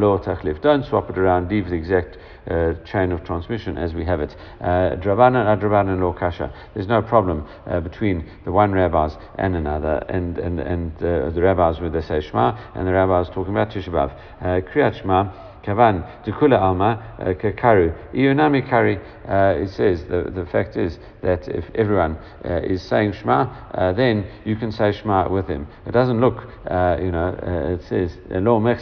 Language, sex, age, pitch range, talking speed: English, male, 60-79, 90-105 Hz, 160 wpm